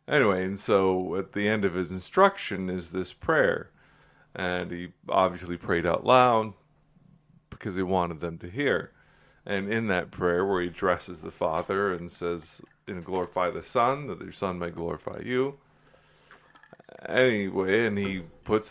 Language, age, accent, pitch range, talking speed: English, 40-59, American, 90-110 Hz, 155 wpm